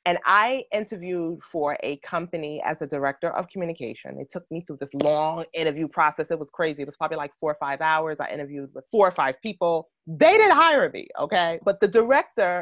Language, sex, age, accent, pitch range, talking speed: English, female, 30-49, American, 155-210 Hz, 215 wpm